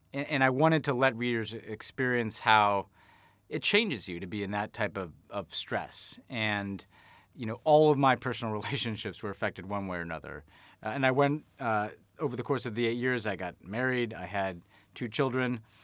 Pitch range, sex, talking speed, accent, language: 100-130 Hz, male, 195 wpm, American, English